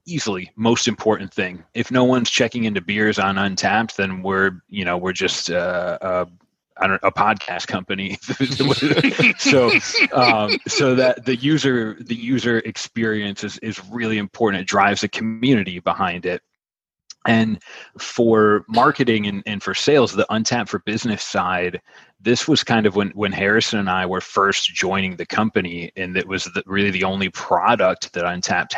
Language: English